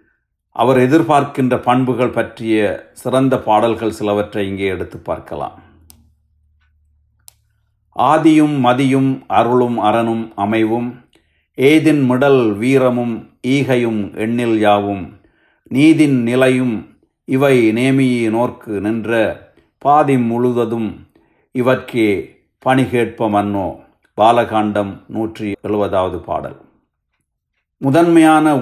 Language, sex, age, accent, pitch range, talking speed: Tamil, male, 60-79, native, 105-130 Hz, 80 wpm